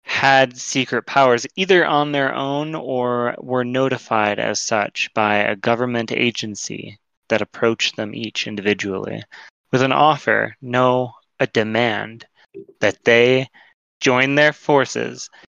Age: 20-39